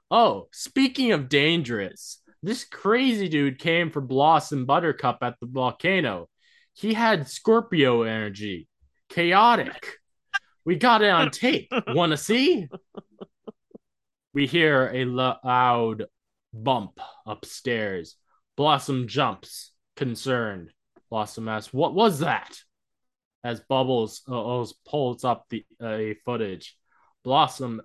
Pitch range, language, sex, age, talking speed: 115-160 Hz, English, male, 20-39, 105 wpm